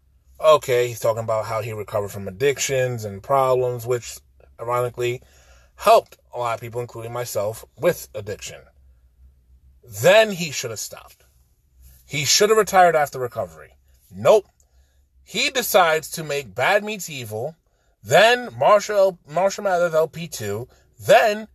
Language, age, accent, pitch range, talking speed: English, 30-49, American, 105-175 Hz, 130 wpm